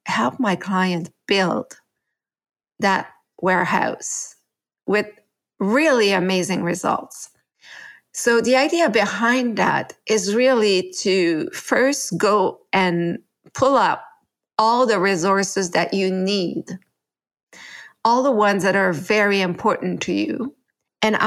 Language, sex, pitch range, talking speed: English, female, 185-220 Hz, 110 wpm